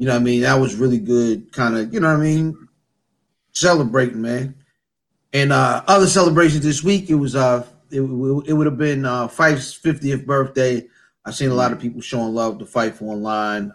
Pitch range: 115-150 Hz